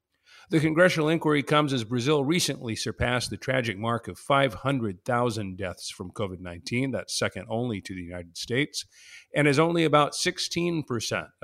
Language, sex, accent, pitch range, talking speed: English, male, American, 110-150 Hz, 145 wpm